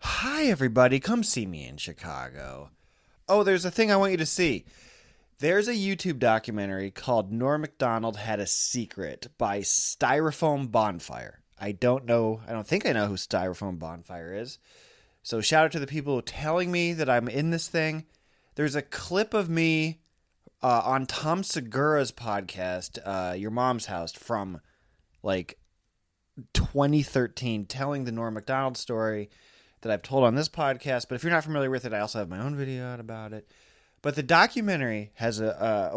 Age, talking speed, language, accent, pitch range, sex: 30-49, 170 wpm, English, American, 105-150 Hz, male